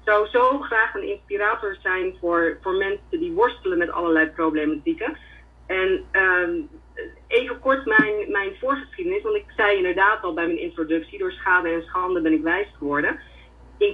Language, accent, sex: Dutch, Dutch, female